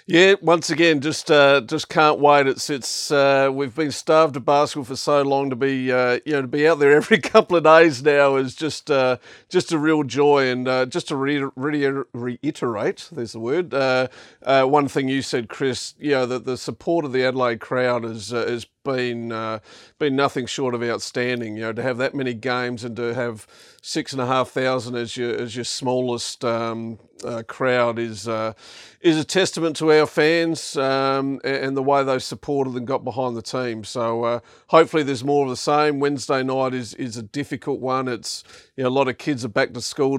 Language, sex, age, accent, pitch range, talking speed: English, male, 50-69, Australian, 125-150 Hz, 220 wpm